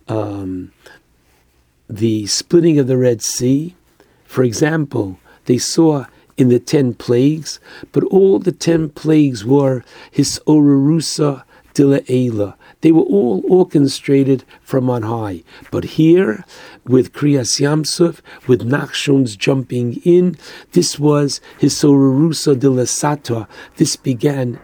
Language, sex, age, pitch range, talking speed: English, male, 60-79, 125-155 Hz, 115 wpm